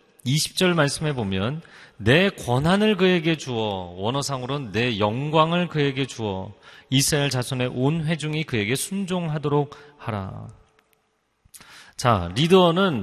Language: Korean